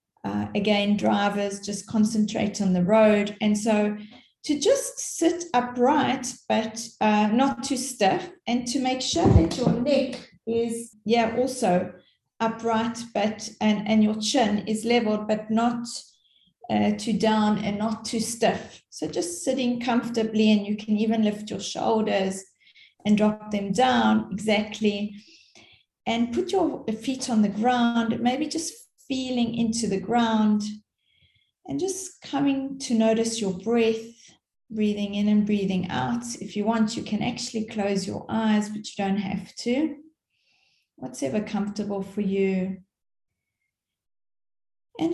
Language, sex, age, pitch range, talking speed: English, female, 30-49, 205-240 Hz, 140 wpm